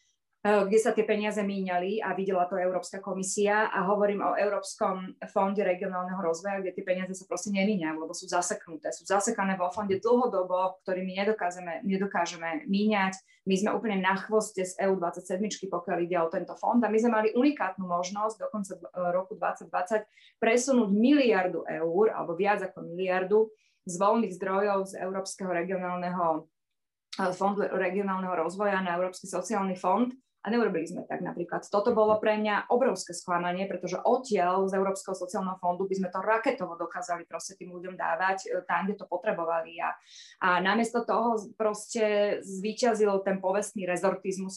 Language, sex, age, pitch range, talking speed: Slovak, female, 20-39, 180-210 Hz, 155 wpm